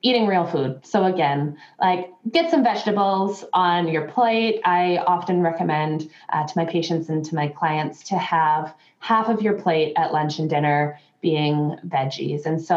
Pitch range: 165-210 Hz